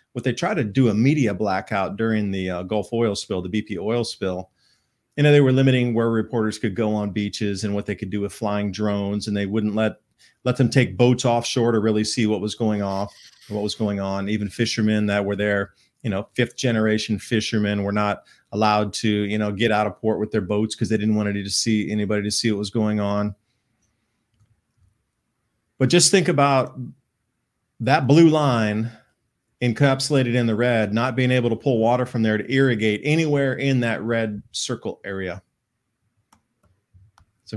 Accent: American